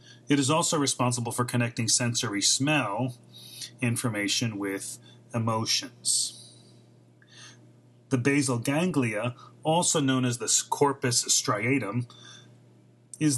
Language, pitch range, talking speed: English, 110-130 Hz, 95 wpm